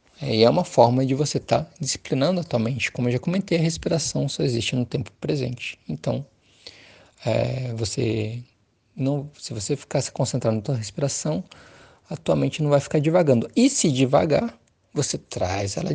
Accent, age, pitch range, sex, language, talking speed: Brazilian, 20-39, 115-150 Hz, male, Portuguese, 175 wpm